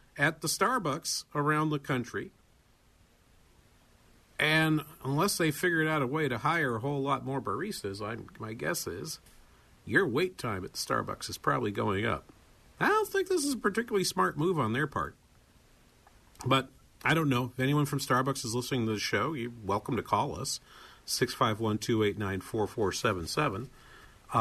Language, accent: English, American